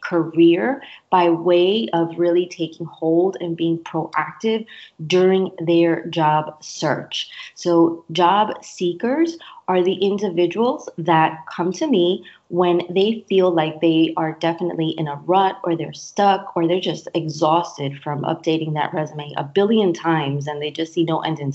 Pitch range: 160-185 Hz